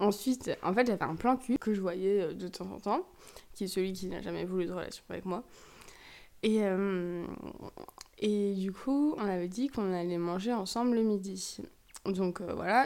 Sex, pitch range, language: female, 185-235 Hz, French